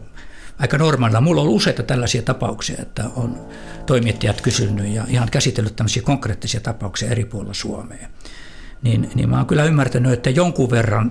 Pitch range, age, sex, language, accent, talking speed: 110-130 Hz, 60-79, male, Finnish, native, 160 wpm